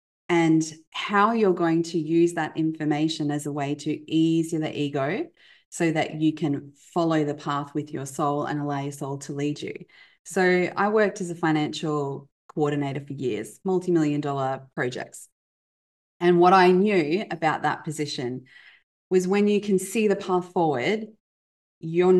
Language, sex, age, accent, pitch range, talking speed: English, female, 20-39, Australian, 150-185 Hz, 160 wpm